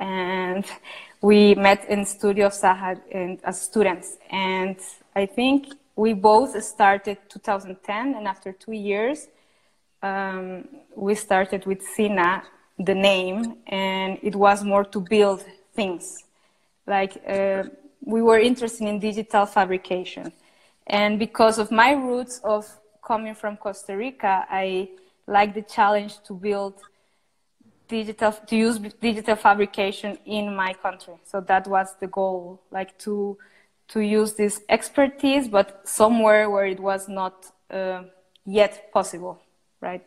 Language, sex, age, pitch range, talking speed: English, female, 20-39, 190-215 Hz, 130 wpm